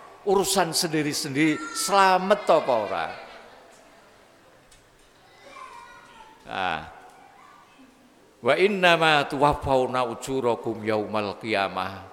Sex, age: male, 50-69